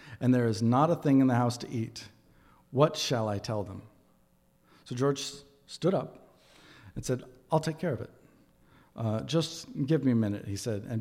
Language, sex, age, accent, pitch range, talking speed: English, male, 40-59, American, 115-140 Hz, 195 wpm